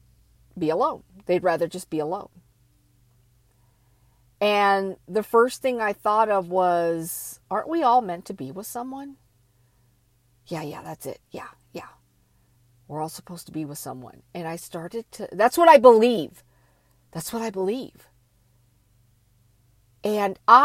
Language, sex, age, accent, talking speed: English, female, 50-69, American, 140 wpm